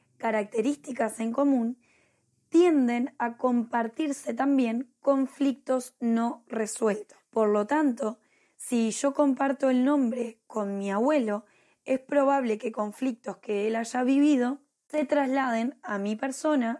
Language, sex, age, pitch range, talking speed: Spanish, female, 10-29, 220-265 Hz, 120 wpm